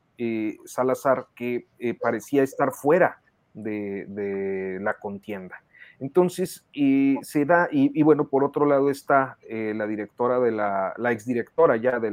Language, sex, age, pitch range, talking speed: Spanish, male, 40-59, 110-140 Hz, 155 wpm